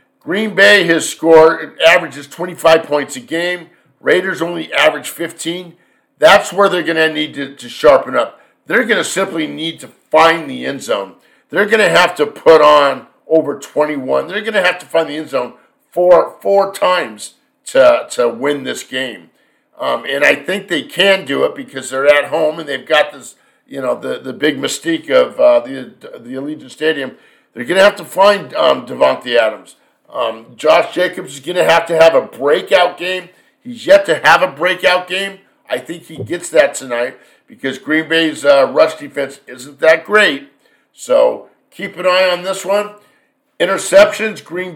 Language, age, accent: English, 50-69, American